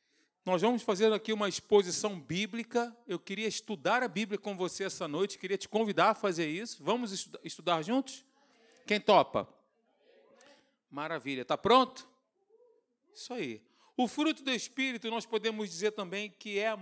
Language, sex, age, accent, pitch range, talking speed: Portuguese, male, 40-59, Brazilian, 200-255 Hz, 155 wpm